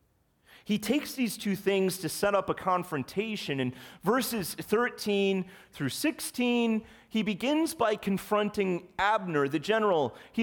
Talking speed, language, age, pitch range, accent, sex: 130 wpm, English, 30-49, 110-180 Hz, American, male